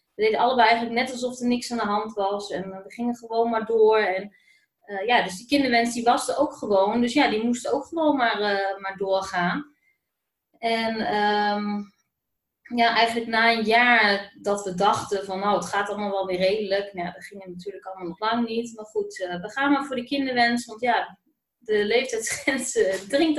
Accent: Dutch